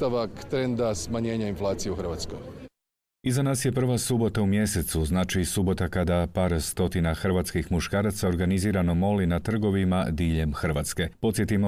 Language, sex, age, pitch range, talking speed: Croatian, male, 40-59, 85-100 Hz, 140 wpm